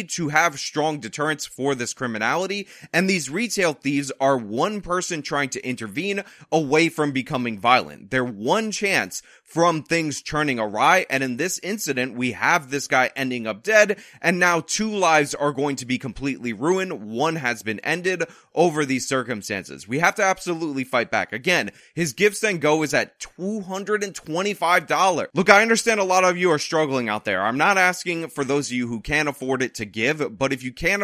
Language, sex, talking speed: English, male, 195 wpm